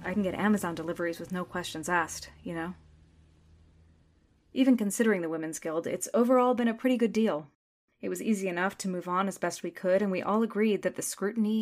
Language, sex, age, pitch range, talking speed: English, female, 20-39, 165-205 Hz, 210 wpm